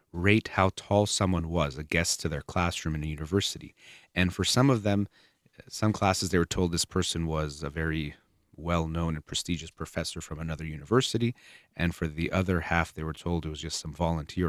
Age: 30-49